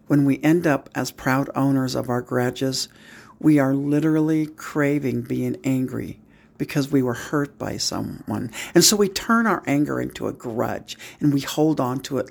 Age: 60-79